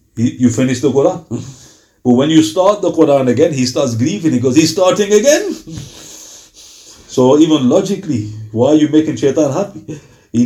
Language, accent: English, Indian